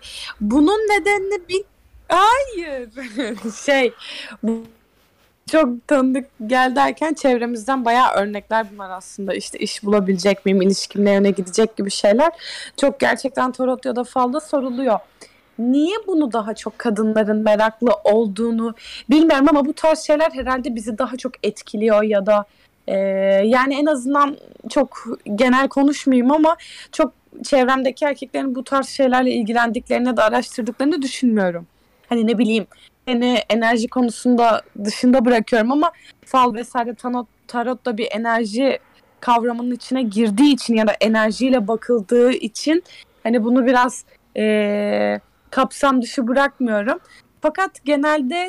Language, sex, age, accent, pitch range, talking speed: Turkish, female, 20-39, native, 225-280 Hz, 125 wpm